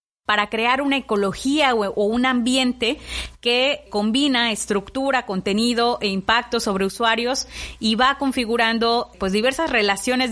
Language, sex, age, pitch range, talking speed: Spanish, female, 30-49, 205-240 Hz, 130 wpm